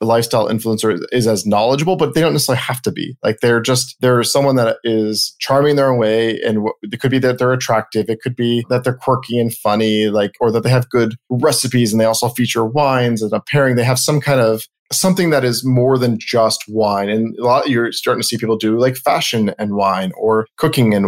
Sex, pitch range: male, 110-130 Hz